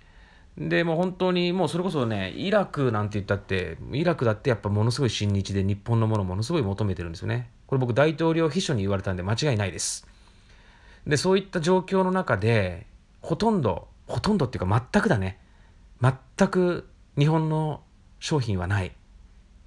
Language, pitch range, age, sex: Japanese, 95-120 Hz, 30-49, male